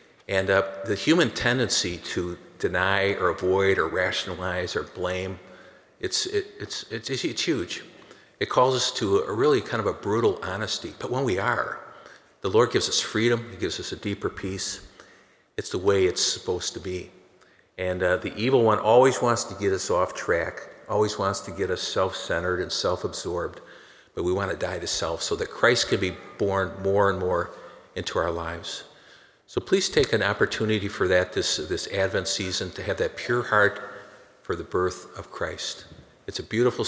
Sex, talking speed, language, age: male, 185 wpm, English, 50-69